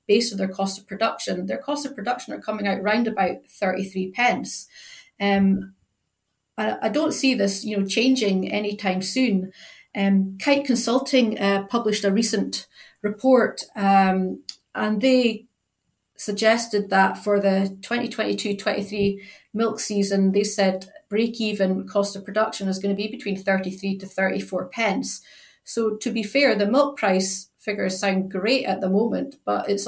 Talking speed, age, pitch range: 150 wpm, 30-49, 195-235 Hz